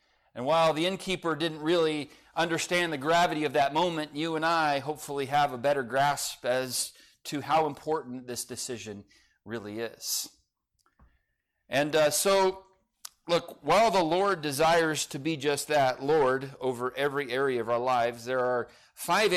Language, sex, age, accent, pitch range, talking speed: English, male, 40-59, American, 125-155 Hz, 155 wpm